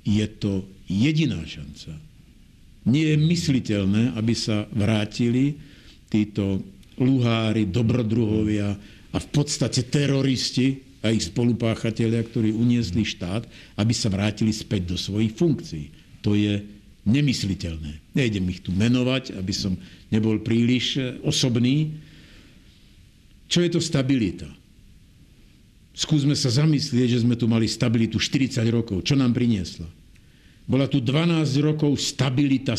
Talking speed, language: 115 wpm, Slovak